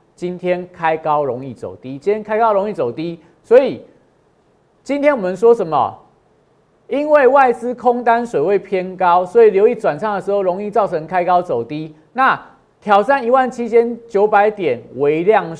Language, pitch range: Chinese, 160-225 Hz